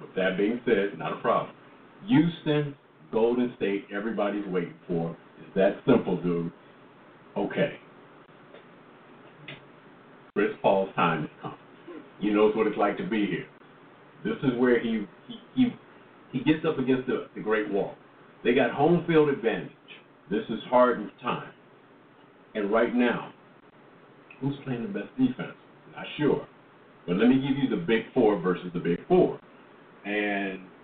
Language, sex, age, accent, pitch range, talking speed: English, male, 50-69, American, 100-135 Hz, 150 wpm